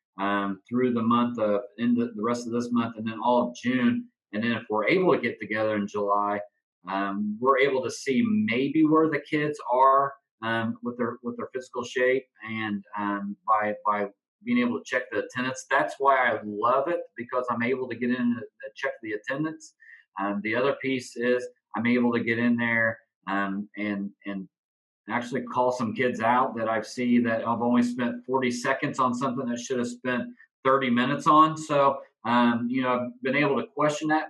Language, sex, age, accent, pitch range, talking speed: English, male, 40-59, American, 110-145 Hz, 205 wpm